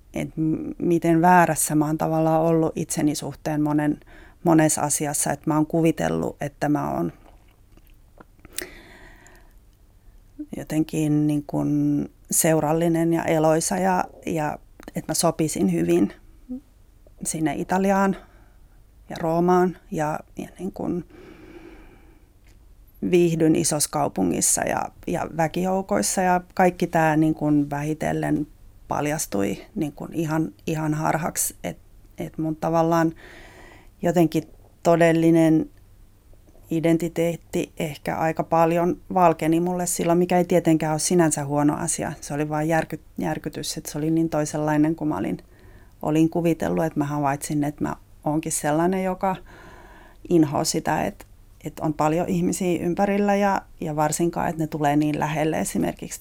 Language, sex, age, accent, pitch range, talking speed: Finnish, female, 30-49, native, 150-170 Hz, 120 wpm